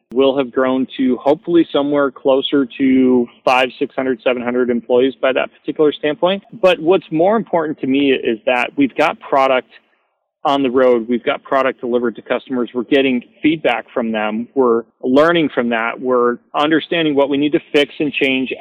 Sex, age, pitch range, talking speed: male, 40-59, 125-150 Hz, 175 wpm